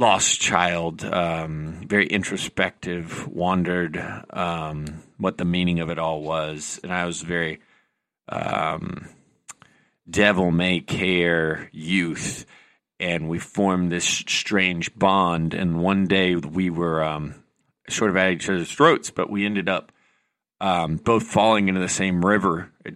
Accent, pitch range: American, 85-95 Hz